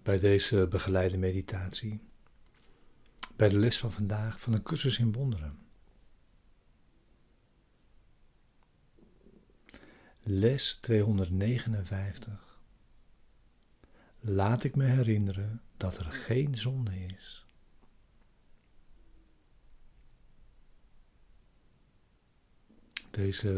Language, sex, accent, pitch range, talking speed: Dutch, male, Dutch, 95-115 Hz, 65 wpm